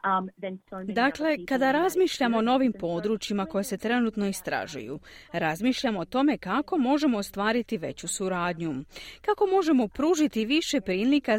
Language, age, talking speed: Croatian, 40-59, 120 wpm